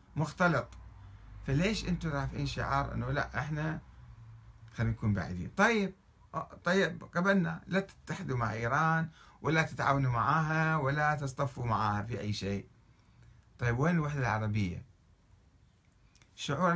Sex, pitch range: male, 105-160 Hz